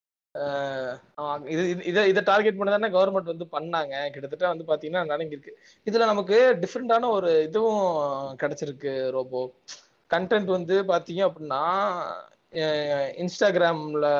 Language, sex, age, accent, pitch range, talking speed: Tamil, male, 20-39, native, 150-200 Hz, 100 wpm